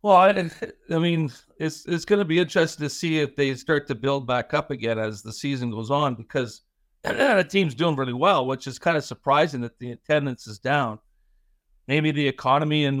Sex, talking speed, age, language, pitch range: male, 205 wpm, 50-69, English, 125-155 Hz